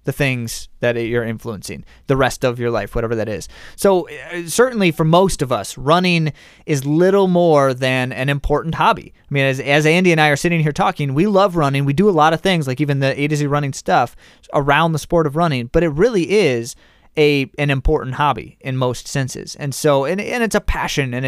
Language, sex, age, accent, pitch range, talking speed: English, male, 30-49, American, 130-165 Hz, 225 wpm